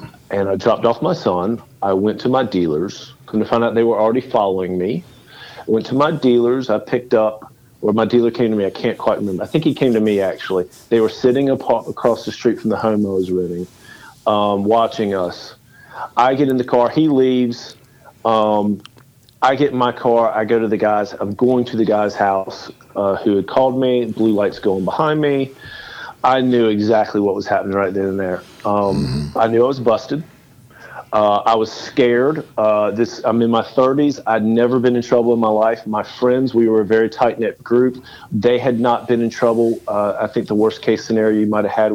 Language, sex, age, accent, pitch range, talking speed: English, male, 40-59, American, 105-125 Hz, 220 wpm